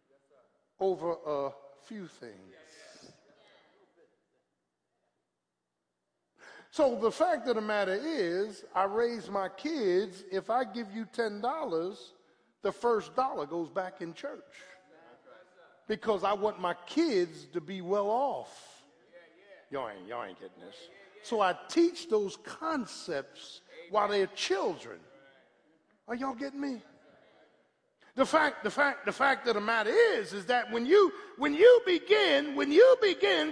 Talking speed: 130 wpm